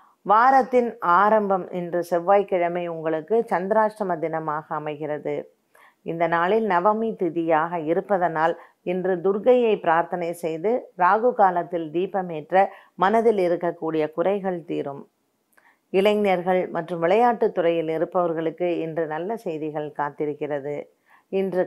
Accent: native